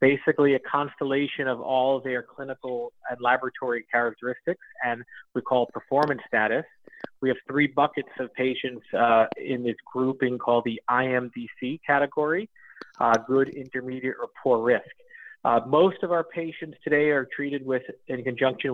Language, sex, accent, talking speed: English, male, American, 145 wpm